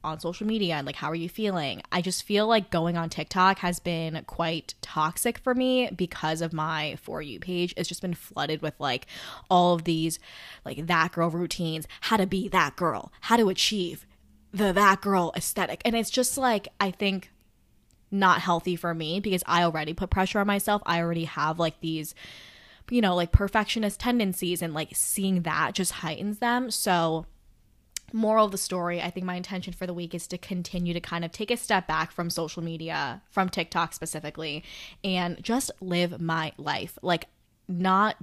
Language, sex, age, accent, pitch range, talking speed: English, female, 10-29, American, 160-190 Hz, 190 wpm